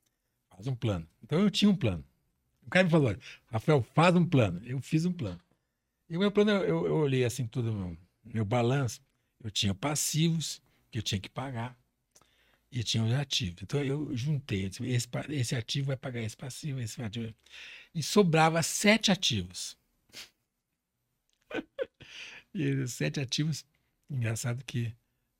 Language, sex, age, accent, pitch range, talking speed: Portuguese, male, 60-79, Brazilian, 115-150 Hz, 150 wpm